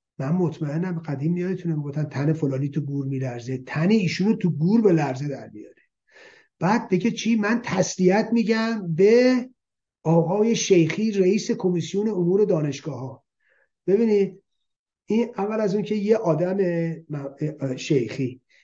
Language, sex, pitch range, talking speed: Persian, male, 150-190 Hz, 140 wpm